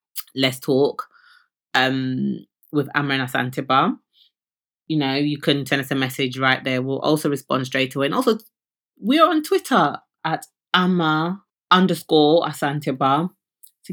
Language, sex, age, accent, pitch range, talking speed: English, female, 20-39, British, 140-185 Hz, 140 wpm